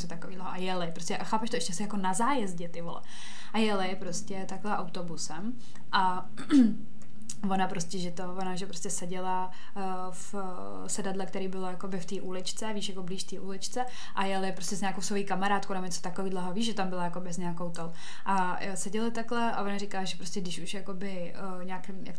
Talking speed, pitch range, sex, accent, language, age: 190 wpm, 180-200 Hz, female, native, Czech, 20-39